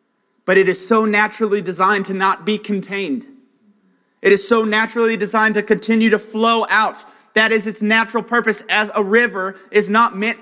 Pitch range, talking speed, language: 200-240 Hz, 180 wpm, English